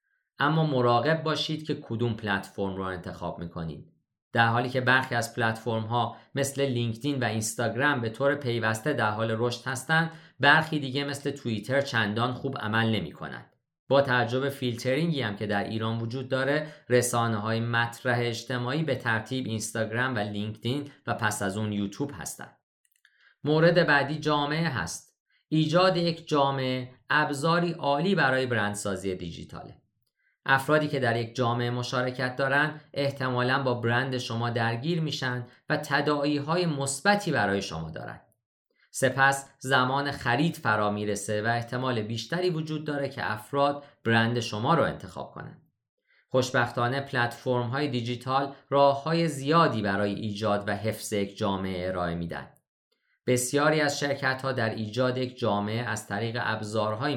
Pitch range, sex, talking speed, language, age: 110-140 Hz, male, 135 wpm, Persian, 50-69